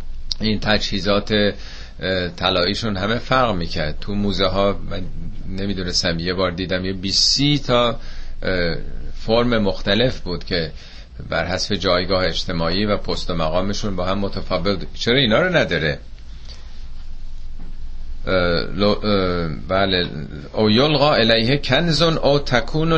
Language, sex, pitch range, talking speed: Persian, male, 75-115 Hz, 105 wpm